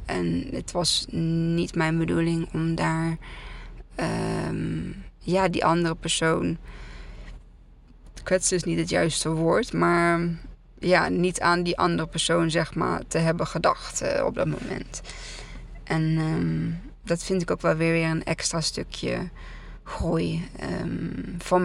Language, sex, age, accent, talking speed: Dutch, female, 20-39, Dutch, 130 wpm